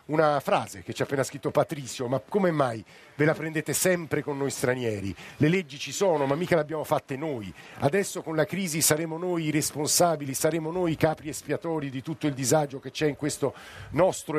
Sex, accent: male, native